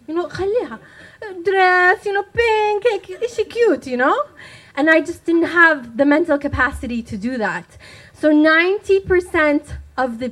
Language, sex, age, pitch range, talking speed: English, female, 20-39, 220-315 Hz, 150 wpm